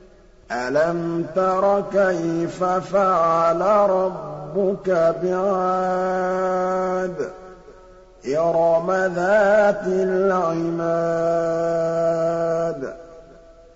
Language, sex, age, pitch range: Arabic, male, 50-69, 165-190 Hz